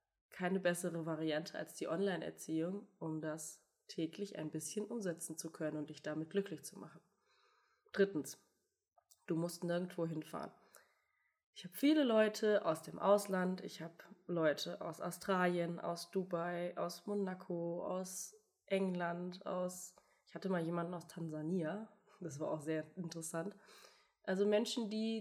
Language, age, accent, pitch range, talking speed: German, 20-39, German, 165-200 Hz, 140 wpm